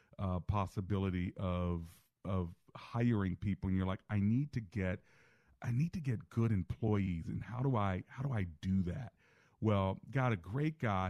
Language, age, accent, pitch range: English, 40-59, American, 90-110 Hz